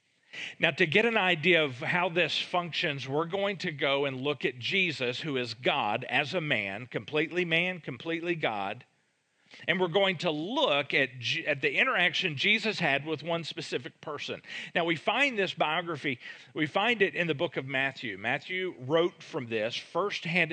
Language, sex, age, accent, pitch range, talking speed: English, male, 50-69, American, 140-190 Hz, 175 wpm